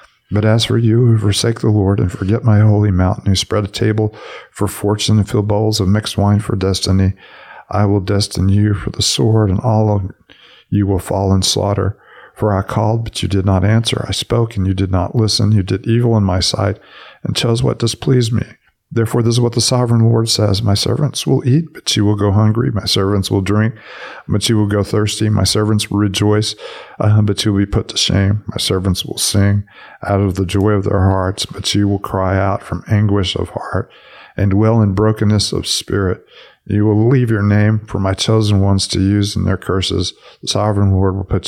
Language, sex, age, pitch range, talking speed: English, male, 50-69, 95-110 Hz, 220 wpm